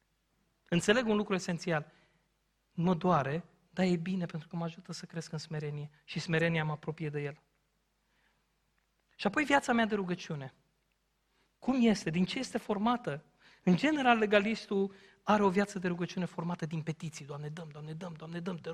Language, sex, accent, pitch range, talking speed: Romanian, male, native, 150-185 Hz, 175 wpm